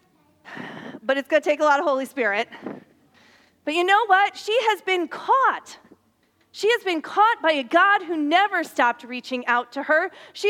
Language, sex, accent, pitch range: English, female, American, 245-385 Hz